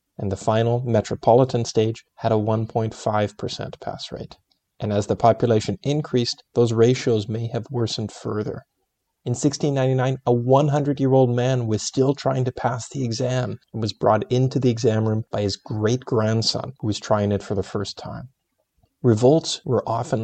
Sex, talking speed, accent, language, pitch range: male, 160 wpm, American, English, 110-125 Hz